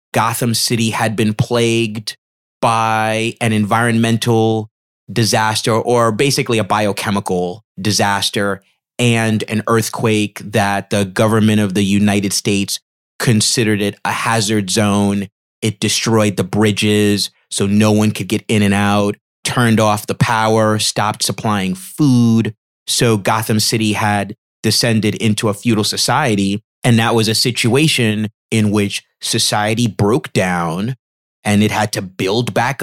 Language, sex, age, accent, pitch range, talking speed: English, male, 30-49, American, 105-120 Hz, 135 wpm